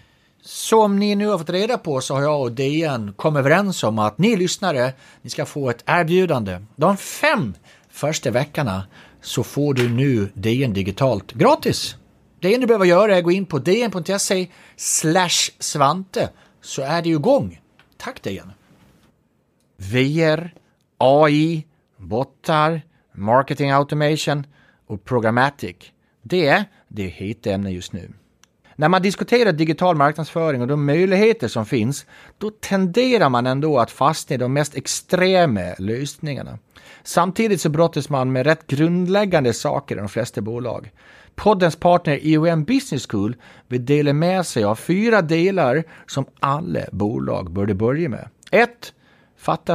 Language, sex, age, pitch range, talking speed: English, male, 30-49, 125-180 Hz, 145 wpm